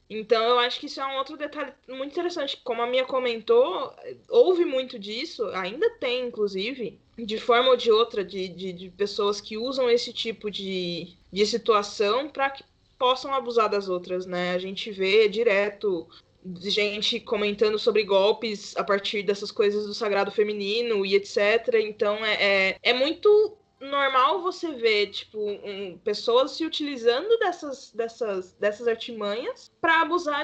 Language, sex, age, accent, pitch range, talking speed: Portuguese, female, 20-39, Brazilian, 210-320 Hz, 160 wpm